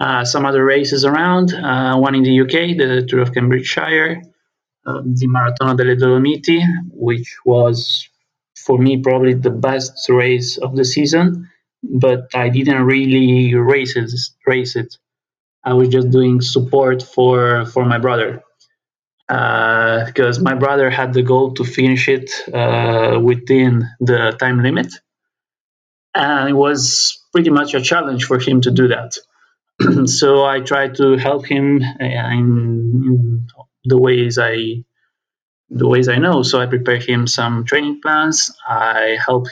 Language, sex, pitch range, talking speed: English, male, 125-140 Hz, 145 wpm